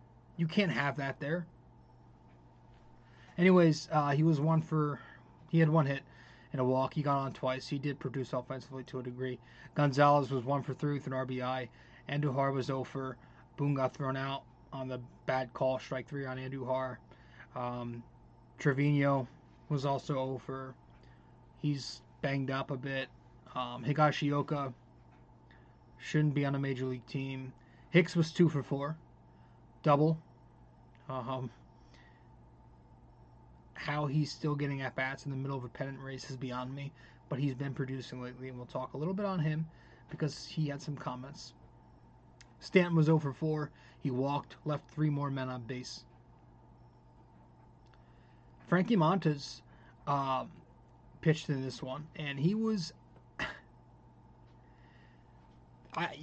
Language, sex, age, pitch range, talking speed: English, male, 20-39, 125-150 Hz, 145 wpm